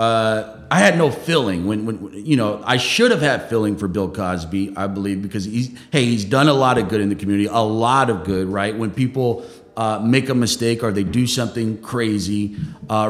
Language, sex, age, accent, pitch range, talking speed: English, male, 30-49, American, 100-125 Hz, 220 wpm